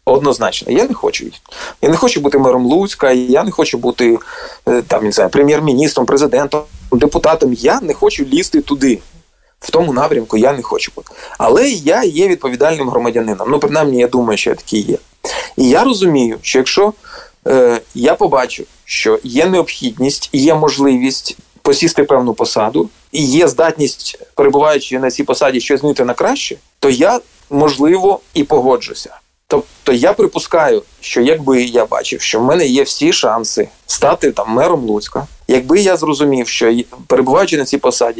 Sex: male